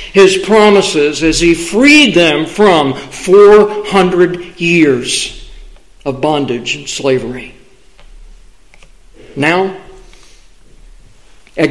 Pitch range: 170-210 Hz